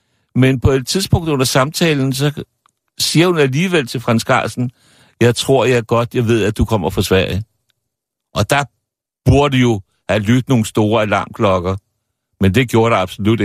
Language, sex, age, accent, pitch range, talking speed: Danish, male, 60-79, native, 105-125 Hz, 170 wpm